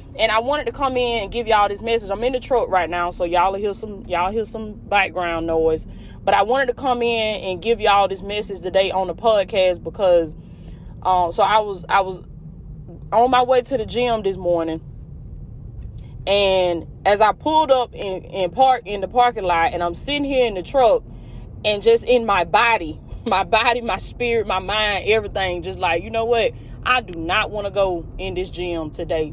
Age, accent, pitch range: 10-29, American, 175-230 Hz